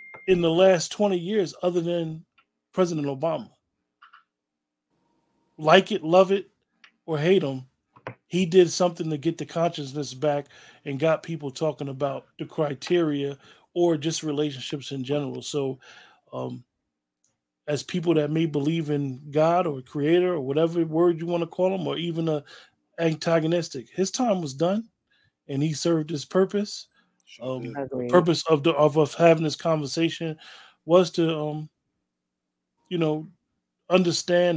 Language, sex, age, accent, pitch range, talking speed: English, male, 20-39, American, 135-170 Hz, 145 wpm